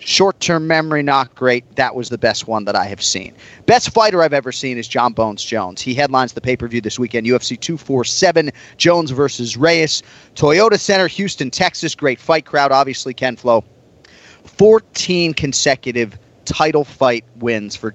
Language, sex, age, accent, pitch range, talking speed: English, male, 30-49, American, 110-145 Hz, 175 wpm